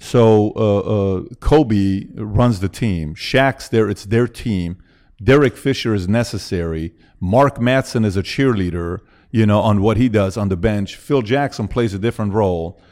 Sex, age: male, 40-59